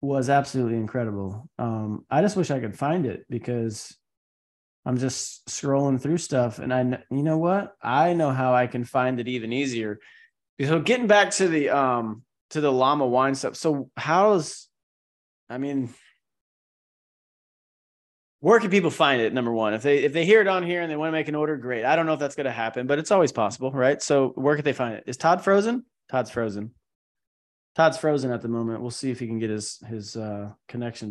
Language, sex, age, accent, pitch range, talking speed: English, male, 20-39, American, 110-145 Hz, 210 wpm